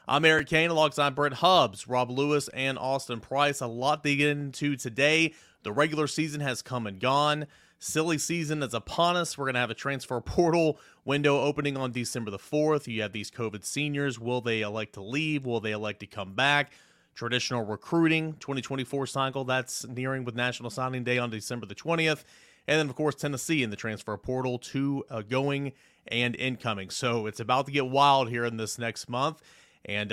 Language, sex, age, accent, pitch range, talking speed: English, male, 30-49, American, 120-145 Hz, 195 wpm